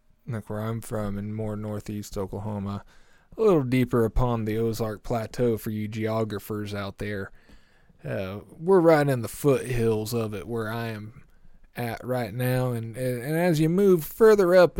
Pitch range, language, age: 110-145 Hz, English, 20-39